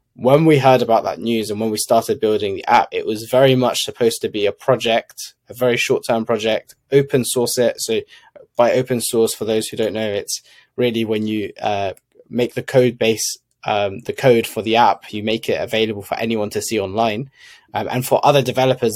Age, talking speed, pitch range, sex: 20-39, 210 wpm, 110-125 Hz, male